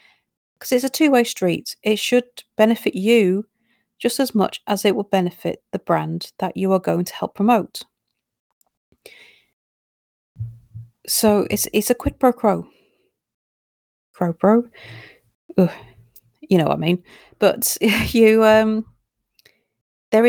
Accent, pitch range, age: British, 185-225 Hz, 40-59